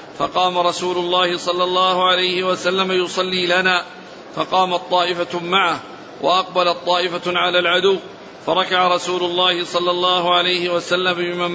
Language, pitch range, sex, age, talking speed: Arabic, 175-185 Hz, male, 50-69, 125 wpm